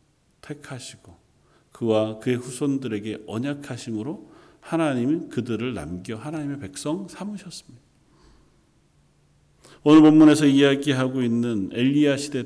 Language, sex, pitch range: Korean, male, 105-135 Hz